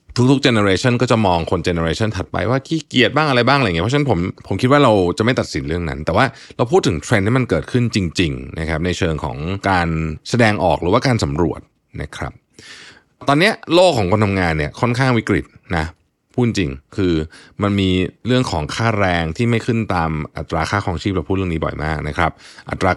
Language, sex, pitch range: Thai, male, 80-115 Hz